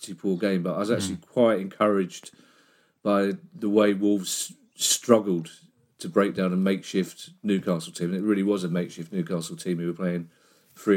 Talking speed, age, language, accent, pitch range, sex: 175 wpm, 40-59, English, British, 95-120 Hz, male